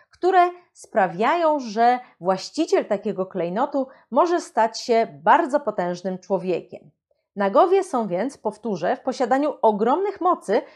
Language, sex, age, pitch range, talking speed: Polish, female, 30-49, 210-300 Hz, 110 wpm